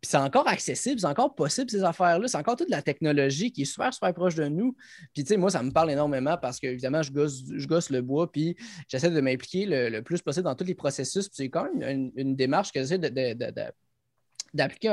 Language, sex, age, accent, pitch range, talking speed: French, male, 20-39, Canadian, 130-170 Hz, 255 wpm